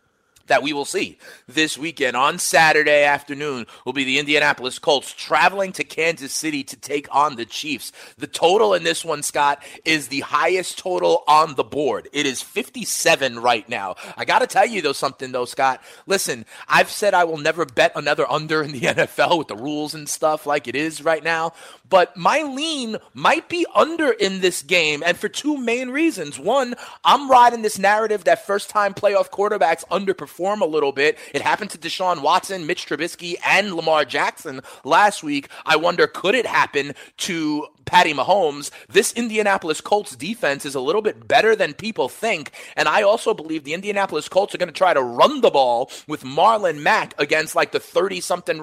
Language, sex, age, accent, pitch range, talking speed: English, male, 30-49, American, 155-230 Hz, 190 wpm